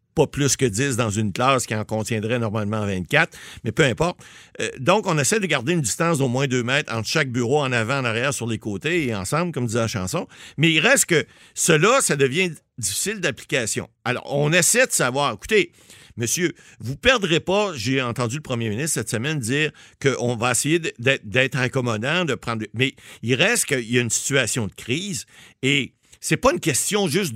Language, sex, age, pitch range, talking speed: French, male, 50-69, 115-150 Hz, 205 wpm